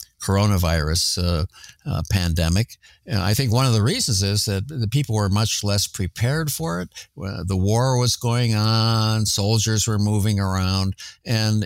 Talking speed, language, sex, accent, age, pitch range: 165 wpm, English, male, American, 60-79, 90-110 Hz